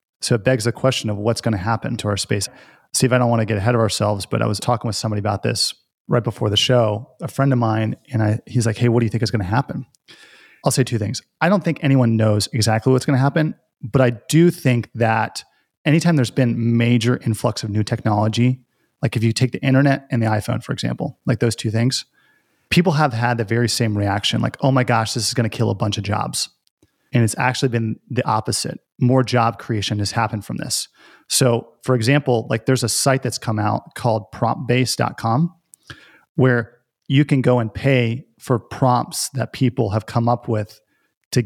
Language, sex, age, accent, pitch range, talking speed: English, male, 30-49, American, 110-130 Hz, 225 wpm